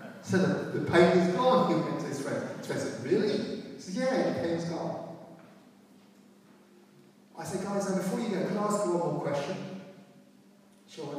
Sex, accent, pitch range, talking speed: male, British, 145-205 Hz, 200 wpm